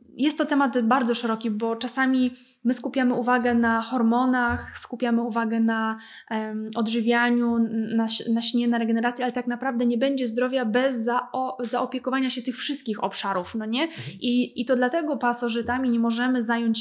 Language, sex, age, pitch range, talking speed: Polish, female, 20-39, 220-240 Hz, 165 wpm